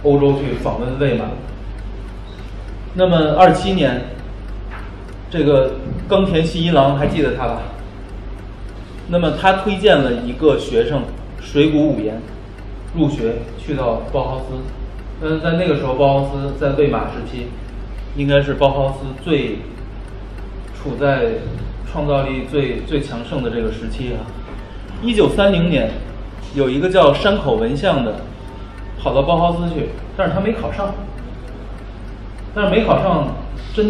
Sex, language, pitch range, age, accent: male, Chinese, 100-150 Hz, 20-39, native